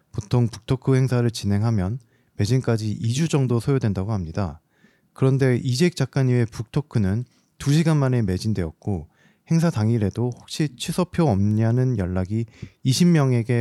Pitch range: 105-135 Hz